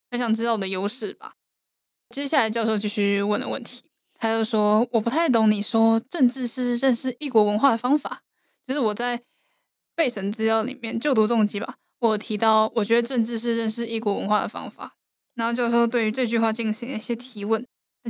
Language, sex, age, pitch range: Chinese, female, 10-29, 215-245 Hz